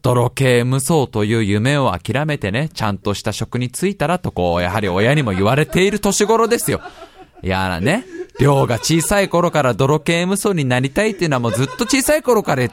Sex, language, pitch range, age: male, Japanese, 140-235 Hz, 20-39